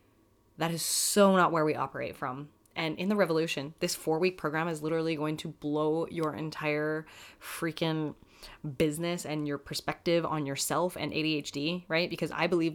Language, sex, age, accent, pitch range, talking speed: English, female, 20-39, American, 145-165 Hz, 165 wpm